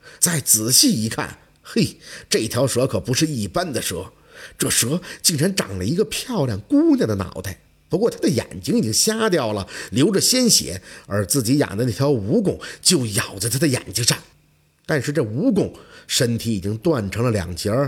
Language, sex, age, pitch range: Chinese, male, 50-69, 100-165 Hz